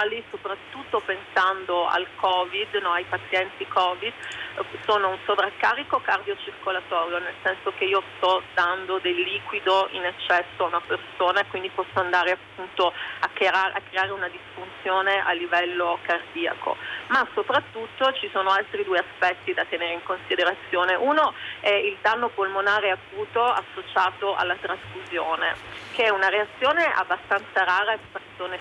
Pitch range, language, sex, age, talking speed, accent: 185-230 Hz, Italian, female, 40-59, 130 wpm, native